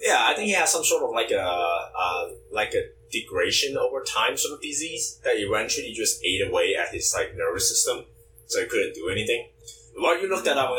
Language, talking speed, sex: English, 235 wpm, male